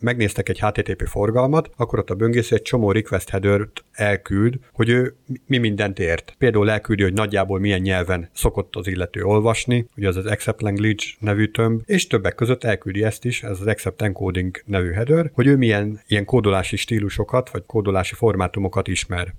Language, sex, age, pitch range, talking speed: Hungarian, male, 50-69, 95-120 Hz, 175 wpm